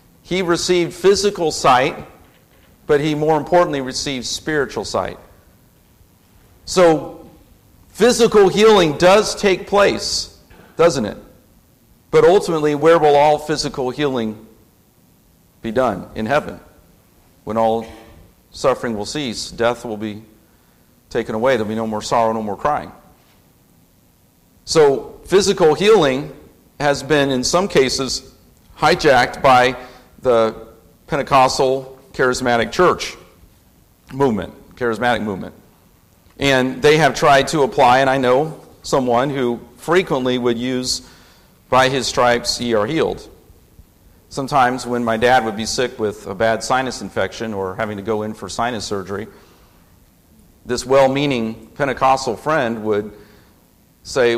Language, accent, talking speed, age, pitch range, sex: English, American, 125 wpm, 50-69, 110-150 Hz, male